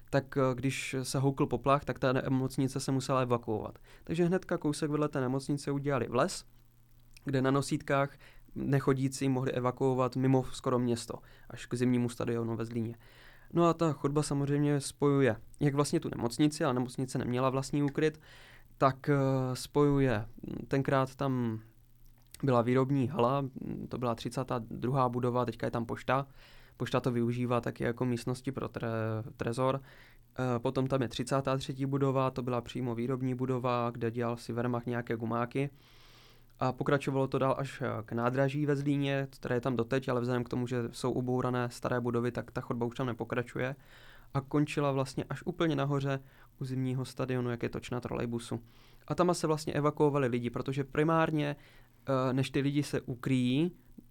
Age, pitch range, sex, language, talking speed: 20-39, 120-140 Hz, male, Czech, 160 wpm